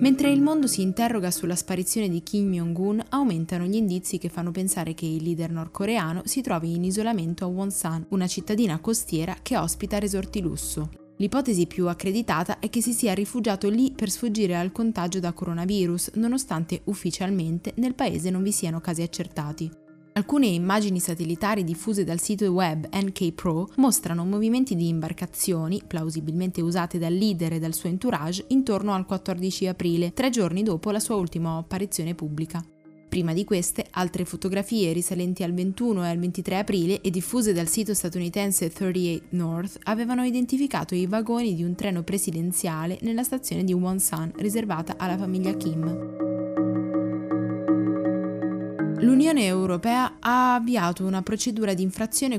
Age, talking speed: 20-39, 150 wpm